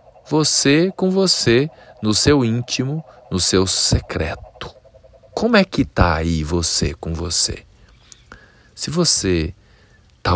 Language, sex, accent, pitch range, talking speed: Portuguese, male, Brazilian, 85-115 Hz, 115 wpm